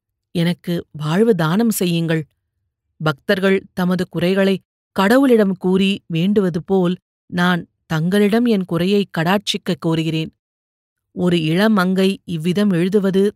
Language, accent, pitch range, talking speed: Tamil, native, 170-205 Hz, 100 wpm